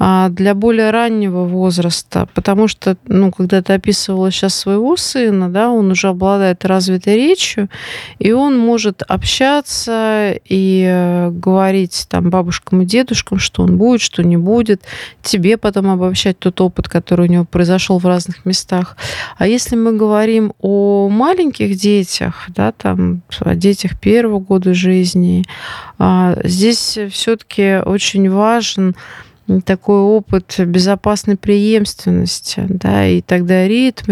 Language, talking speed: Russian, 130 wpm